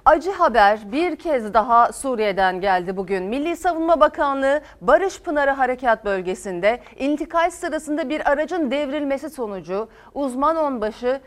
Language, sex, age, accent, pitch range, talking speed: Turkish, female, 40-59, native, 205-300 Hz, 120 wpm